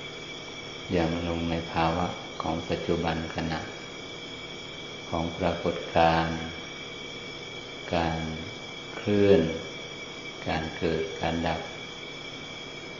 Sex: male